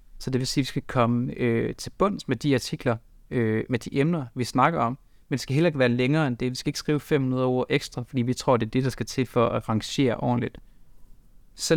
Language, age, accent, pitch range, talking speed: Danish, 30-49, native, 115-145 Hz, 265 wpm